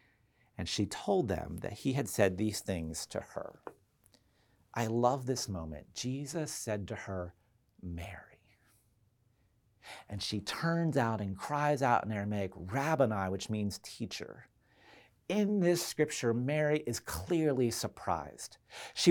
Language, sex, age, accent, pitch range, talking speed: English, male, 40-59, American, 115-155 Hz, 130 wpm